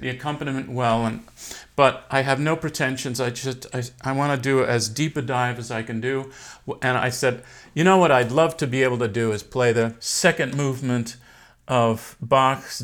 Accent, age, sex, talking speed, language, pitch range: American, 50-69, male, 205 wpm, English, 115-140 Hz